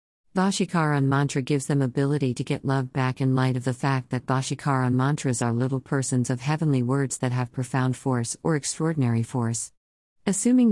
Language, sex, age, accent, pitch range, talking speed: Hindi, female, 50-69, American, 130-150 Hz, 175 wpm